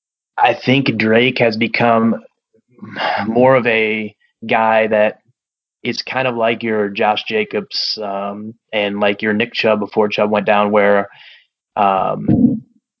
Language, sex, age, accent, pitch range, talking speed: English, male, 20-39, American, 105-120 Hz, 135 wpm